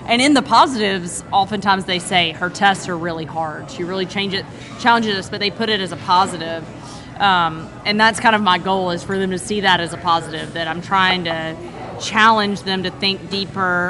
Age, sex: 20-39, female